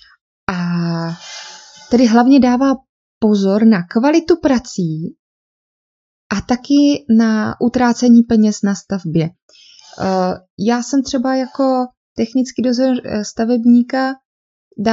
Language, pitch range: Czech, 200-245 Hz